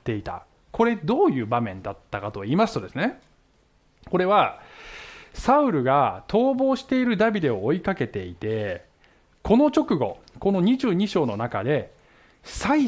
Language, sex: Japanese, male